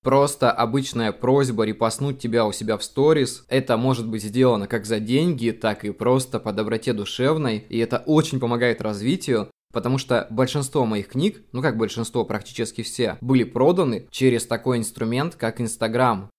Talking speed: 160 wpm